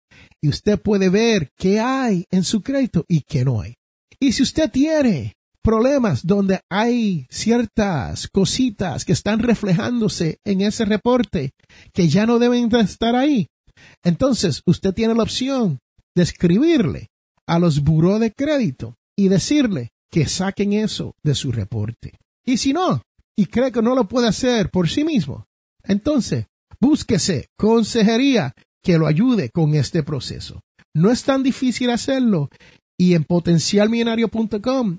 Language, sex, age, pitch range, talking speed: Spanish, male, 50-69, 155-225 Hz, 145 wpm